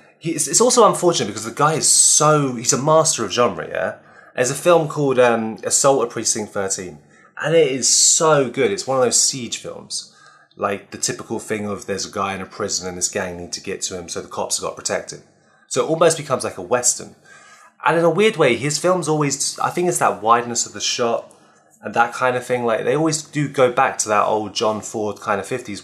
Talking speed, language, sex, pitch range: 235 wpm, English, male, 105-150 Hz